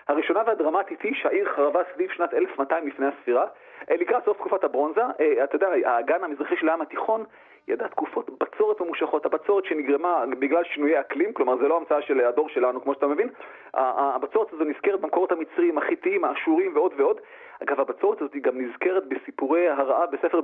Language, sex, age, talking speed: Hebrew, male, 40-59, 165 wpm